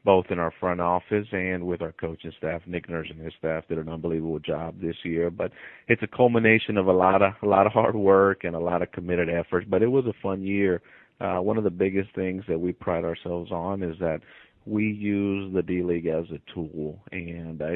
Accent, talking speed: American, 235 wpm